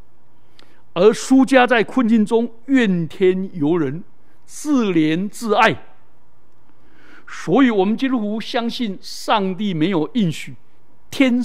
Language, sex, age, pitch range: Chinese, male, 60-79, 170-245 Hz